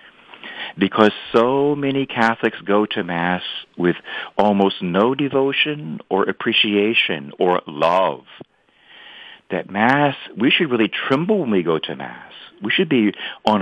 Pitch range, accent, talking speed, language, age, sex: 95-130 Hz, American, 130 wpm, English, 50-69, male